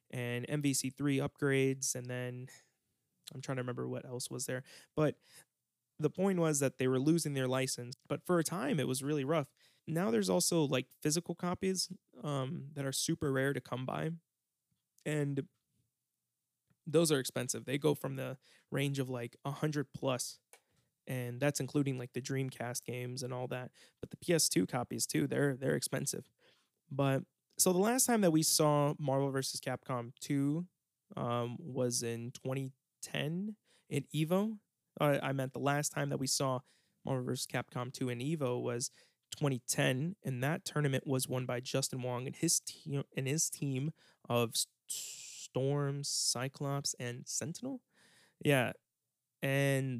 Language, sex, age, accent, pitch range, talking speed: English, male, 20-39, American, 130-155 Hz, 155 wpm